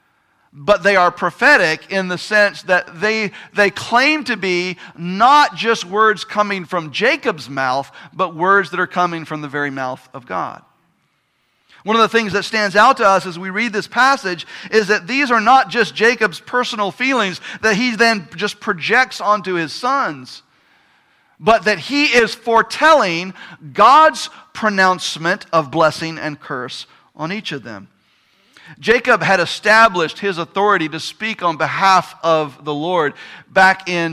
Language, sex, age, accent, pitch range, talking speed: English, male, 50-69, American, 170-230 Hz, 160 wpm